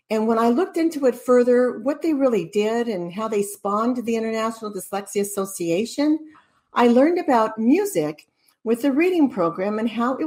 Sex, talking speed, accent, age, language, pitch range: female, 175 wpm, American, 60-79, English, 195-265 Hz